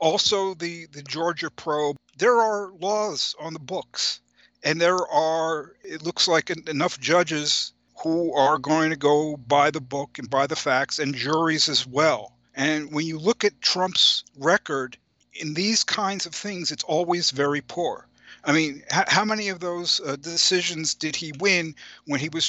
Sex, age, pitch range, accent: male, 50-69, 145-175 Hz, American